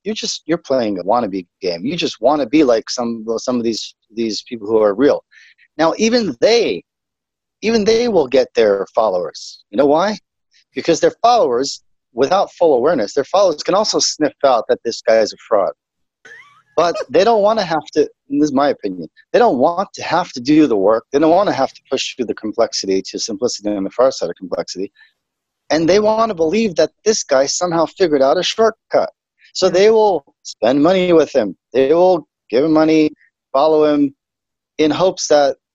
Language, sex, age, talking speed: English, male, 40-59, 200 wpm